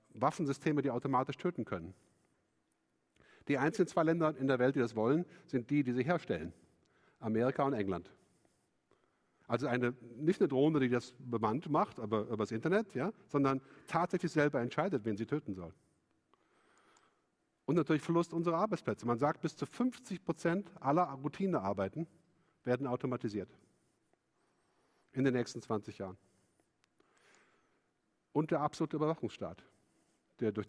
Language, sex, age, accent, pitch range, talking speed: English, male, 50-69, German, 125-165 Hz, 135 wpm